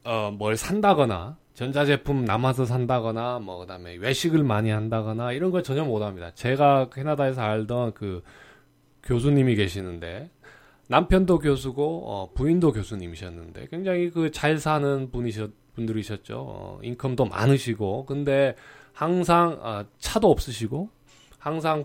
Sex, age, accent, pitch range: male, 20-39, native, 105-145 Hz